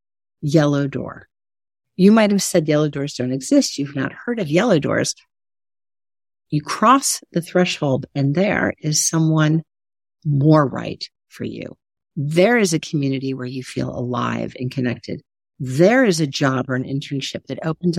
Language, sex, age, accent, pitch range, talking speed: English, female, 50-69, American, 135-185 Hz, 155 wpm